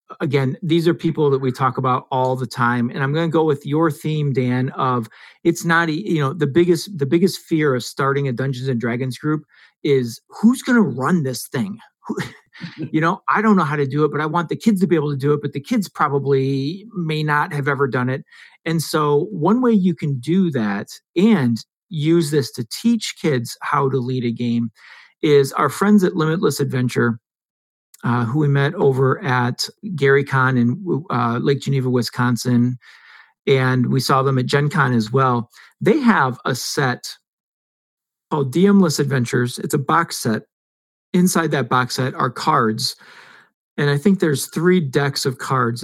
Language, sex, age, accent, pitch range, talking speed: English, male, 40-59, American, 130-165 Hz, 190 wpm